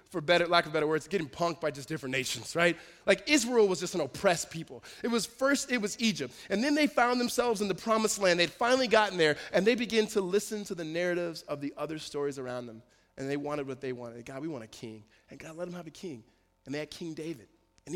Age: 20-39